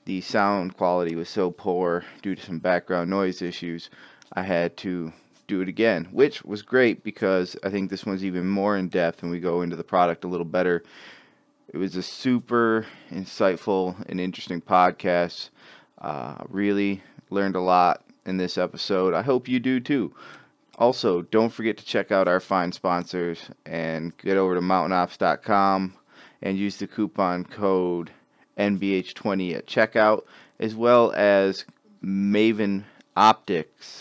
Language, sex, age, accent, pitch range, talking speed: English, male, 30-49, American, 90-105 Hz, 150 wpm